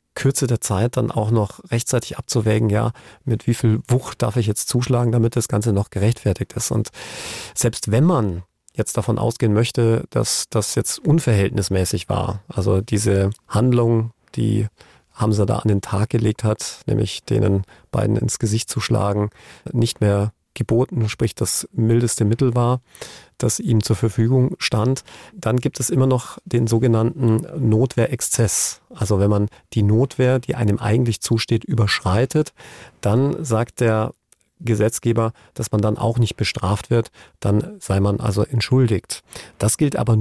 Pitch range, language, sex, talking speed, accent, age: 105-125 Hz, German, male, 155 wpm, German, 40-59